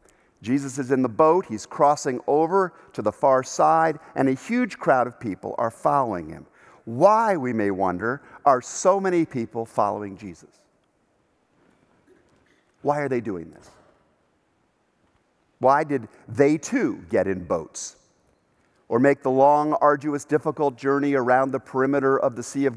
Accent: American